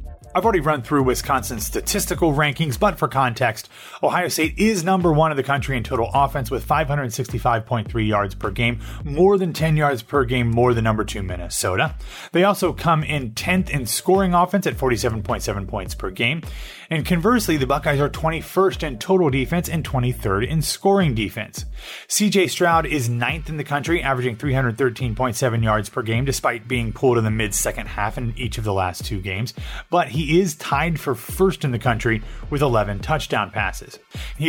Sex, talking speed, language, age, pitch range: male, 185 wpm, English, 30-49, 110-160 Hz